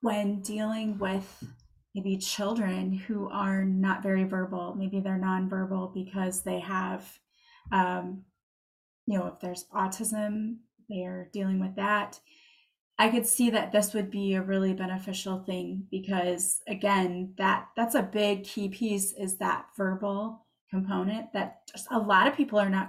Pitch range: 190-225 Hz